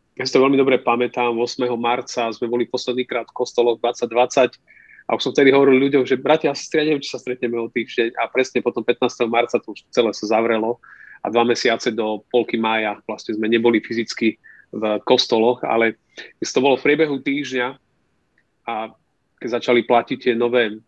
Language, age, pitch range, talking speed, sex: Slovak, 30-49, 120-145 Hz, 180 wpm, male